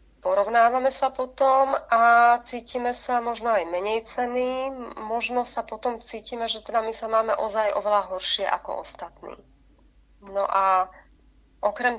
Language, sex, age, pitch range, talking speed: Slovak, female, 30-49, 195-240 Hz, 135 wpm